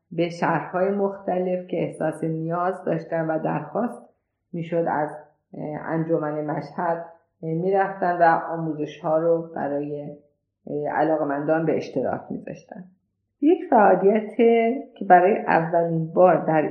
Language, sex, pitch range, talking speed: Persian, female, 160-185 Hz, 115 wpm